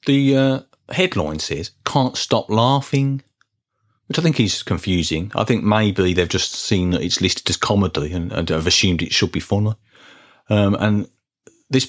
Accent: British